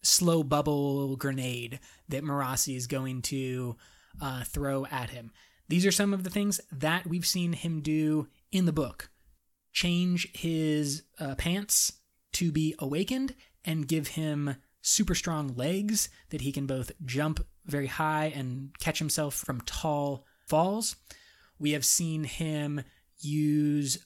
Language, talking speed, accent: English, 140 wpm, American